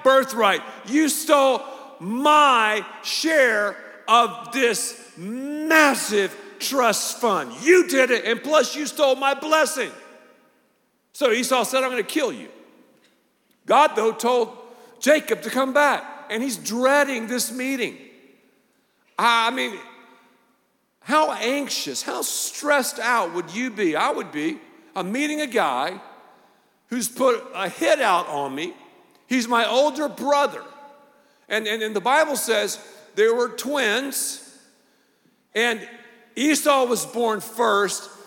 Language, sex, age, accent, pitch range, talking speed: English, male, 50-69, American, 200-270 Hz, 125 wpm